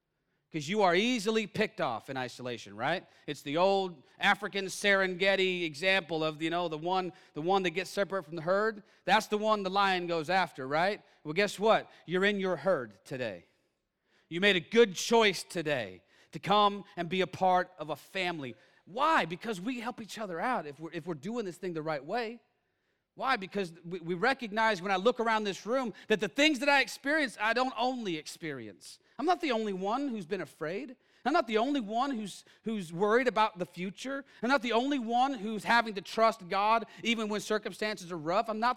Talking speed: 205 wpm